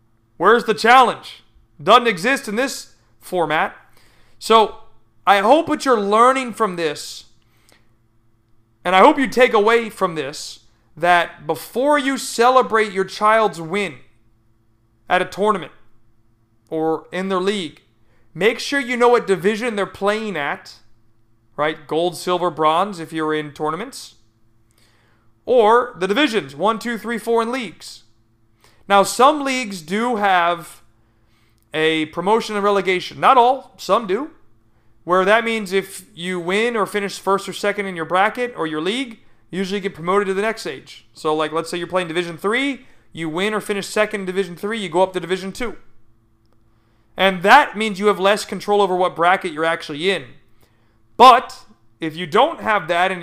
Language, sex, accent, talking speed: English, male, American, 160 wpm